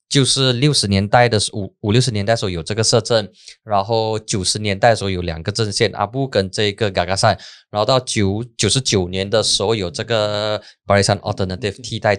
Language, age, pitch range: Chinese, 20-39, 100-130 Hz